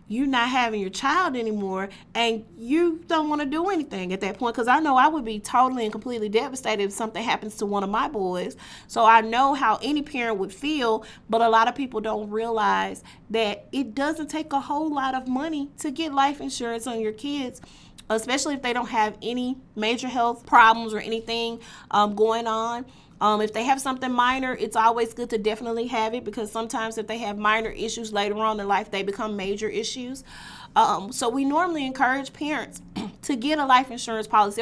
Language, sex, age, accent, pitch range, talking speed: English, female, 30-49, American, 210-250 Hz, 205 wpm